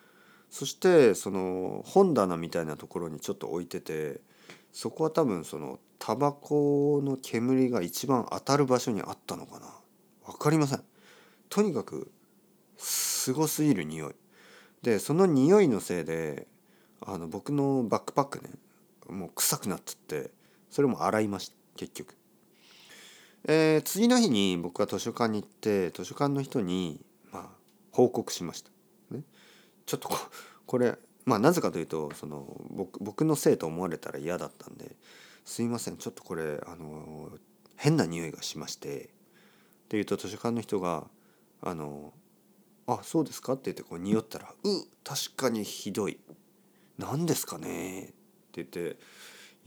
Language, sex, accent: Japanese, male, native